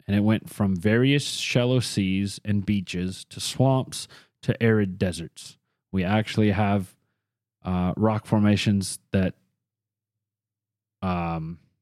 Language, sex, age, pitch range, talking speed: English, male, 20-39, 95-115 Hz, 110 wpm